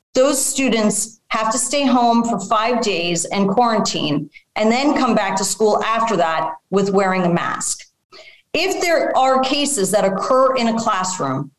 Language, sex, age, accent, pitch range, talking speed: English, female, 40-59, American, 200-265 Hz, 165 wpm